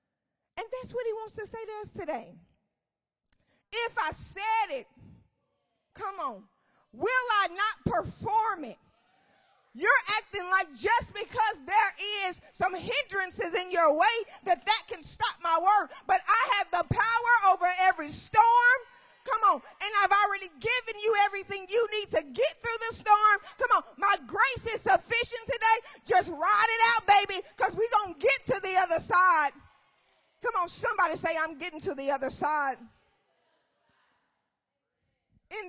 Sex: female